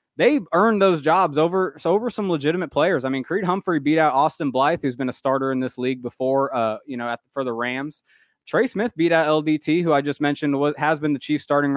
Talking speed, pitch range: 245 wpm, 125-160 Hz